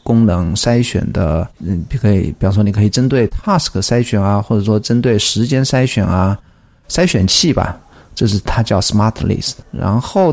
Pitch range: 100-120 Hz